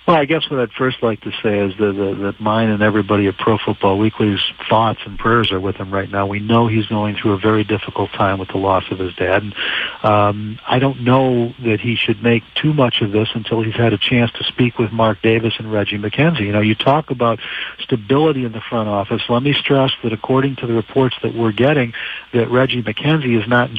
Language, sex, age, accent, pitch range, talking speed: English, male, 60-79, American, 110-125 Hz, 240 wpm